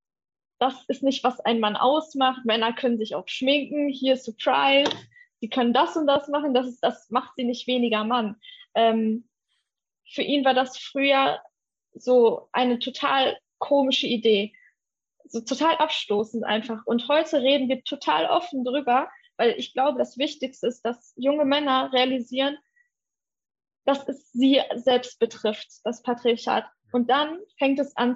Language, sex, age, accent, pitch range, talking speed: German, female, 20-39, German, 235-275 Hz, 150 wpm